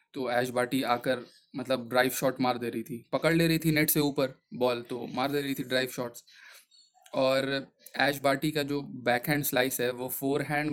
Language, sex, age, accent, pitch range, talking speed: Hindi, male, 20-39, native, 125-150 Hz, 215 wpm